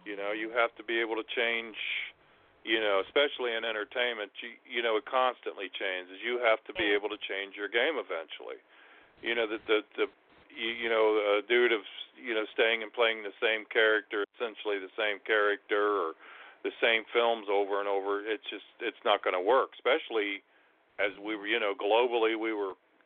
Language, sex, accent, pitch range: English, male, American, 105-130 Hz